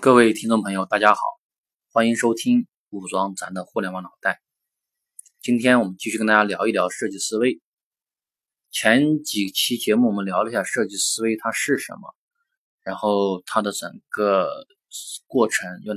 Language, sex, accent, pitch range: Chinese, male, native, 100-135 Hz